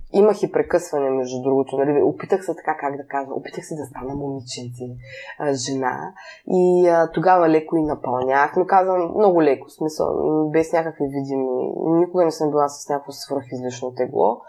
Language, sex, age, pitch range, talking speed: Bulgarian, female, 20-39, 140-175 Hz, 165 wpm